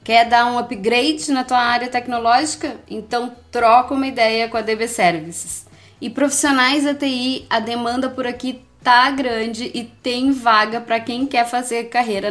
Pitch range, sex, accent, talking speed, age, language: 225-275 Hz, female, Brazilian, 165 wpm, 20-39, Portuguese